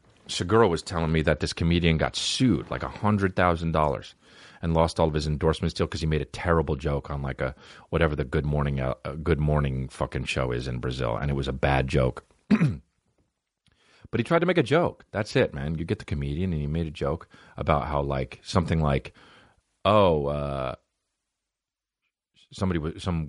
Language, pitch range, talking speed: English, 75-105 Hz, 195 wpm